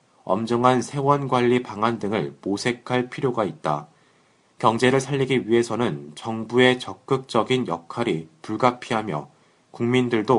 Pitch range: 110-135 Hz